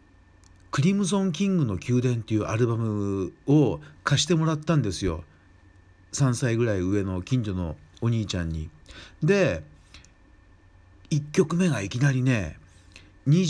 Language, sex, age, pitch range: Japanese, male, 50-69, 90-130 Hz